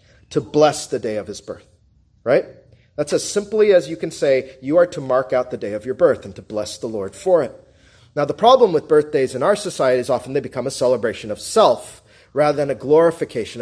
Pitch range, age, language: 120-180 Hz, 40-59, English